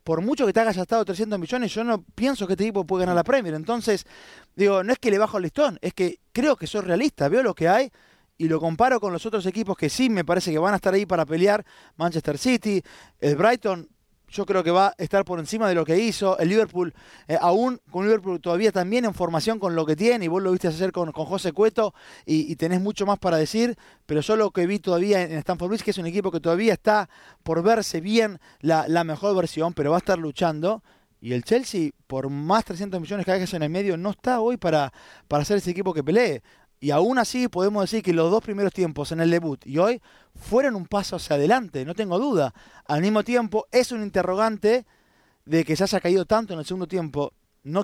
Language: Spanish